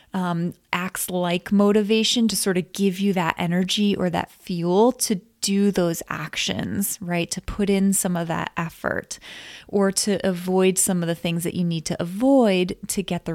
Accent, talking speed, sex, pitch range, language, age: American, 185 wpm, female, 185-215 Hz, English, 20-39